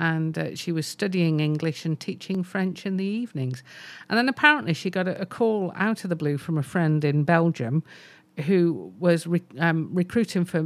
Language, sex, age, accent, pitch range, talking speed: English, female, 50-69, British, 145-180 Hz, 195 wpm